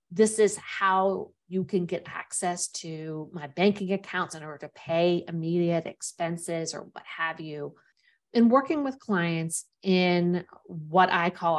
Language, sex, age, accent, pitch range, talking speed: English, female, 50-69, American, 160-190 Hz, 150 wpm